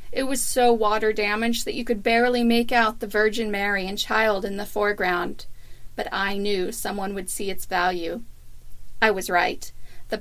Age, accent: 40-59, American